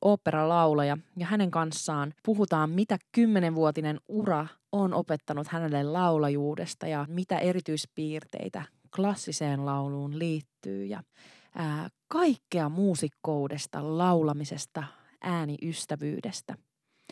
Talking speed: 90 wpm